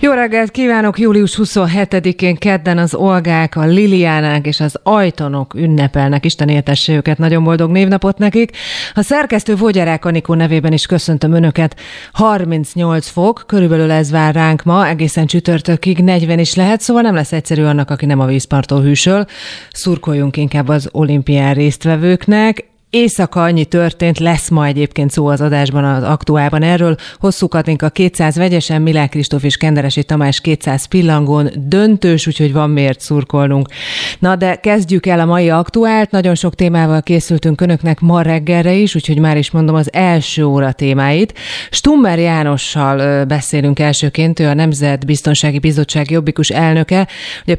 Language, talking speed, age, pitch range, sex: Hungarian, 150 wpm, 30-49, 150-185 Hz, female